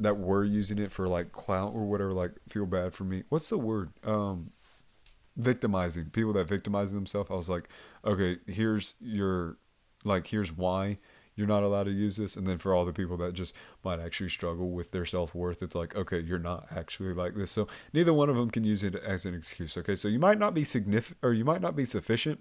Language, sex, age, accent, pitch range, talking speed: English, male, 30-49, American, 95-110 Hz, 225 wpm